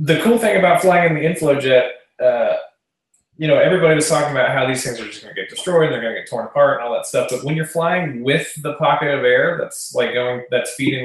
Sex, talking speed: male, 260 wpm